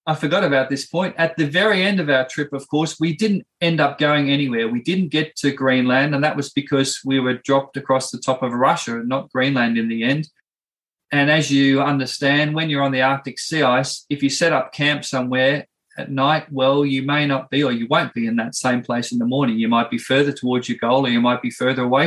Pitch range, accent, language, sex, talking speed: 130-150 Hz, Australian, English, male, 245 wpm